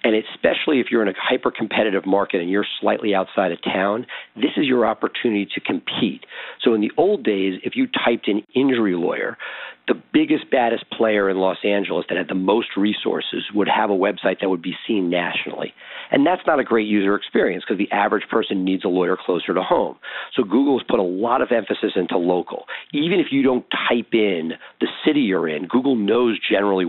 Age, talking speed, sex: 50-69, 205 wpm, male